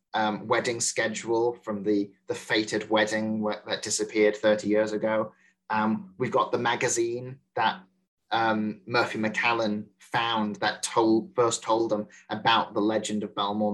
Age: 30-49